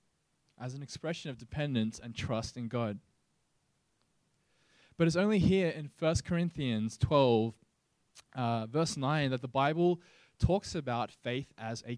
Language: English